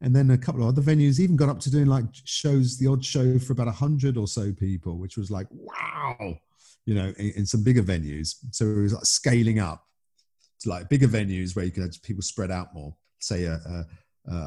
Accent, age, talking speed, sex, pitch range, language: British, 40-59, 230 wpm, male, 95-130 Hz, English